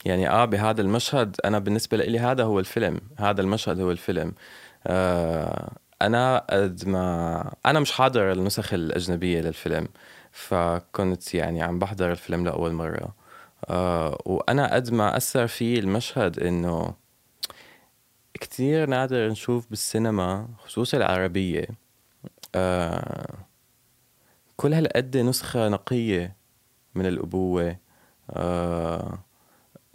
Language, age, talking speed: Arabic, 20-39, 100 wpm